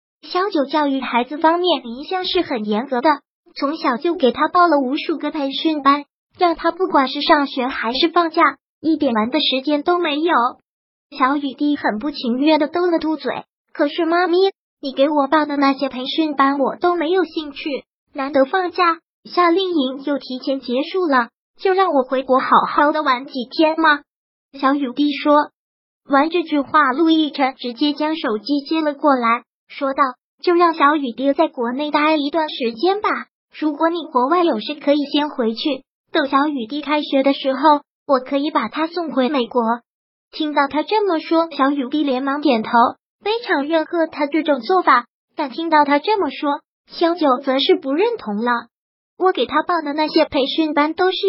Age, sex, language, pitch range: 20-39, male, Chinese, 270-330 Hz